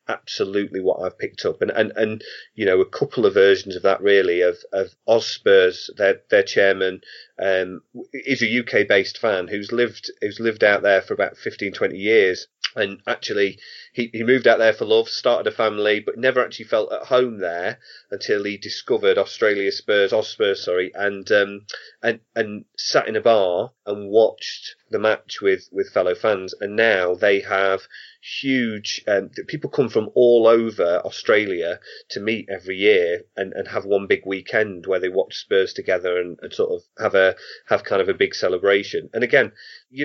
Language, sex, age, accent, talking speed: English, male, 30-49, British, 185 wpm